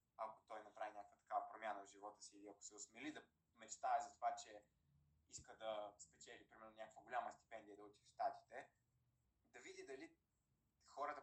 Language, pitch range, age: Bulgarian, 105-135 Hz, 20-39